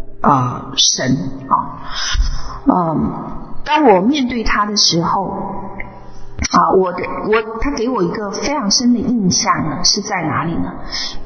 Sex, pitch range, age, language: female, 190-255 Hz, 30-49, Chinese